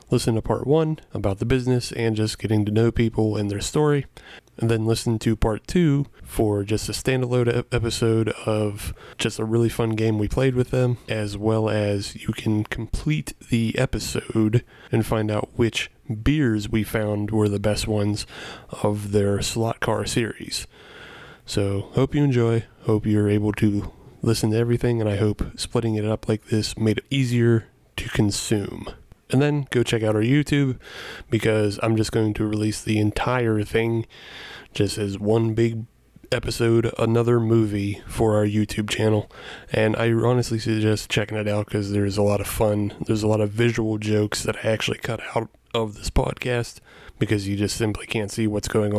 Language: English